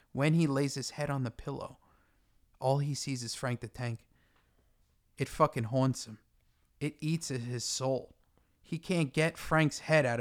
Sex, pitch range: male, 130-165 Hz